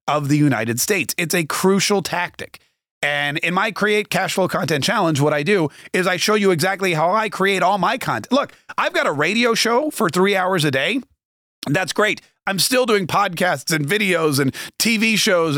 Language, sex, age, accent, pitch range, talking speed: English, male, 30-49, American, 150-200 Hz, 200 wpm